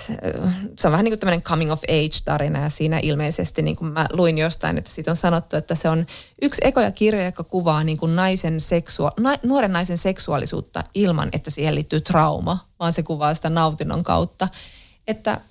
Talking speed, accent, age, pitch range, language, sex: 190 wpm, native, 20-39, 155-205 Hz, Finnish, female